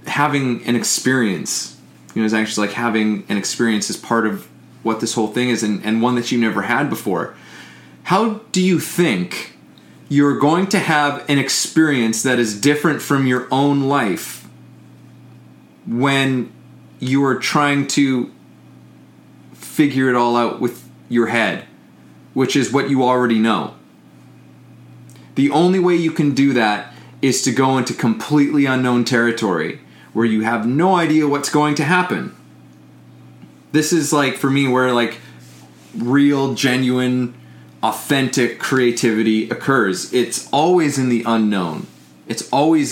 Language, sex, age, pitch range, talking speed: English, male, 30-49, 105-140 Hz, 145 wpm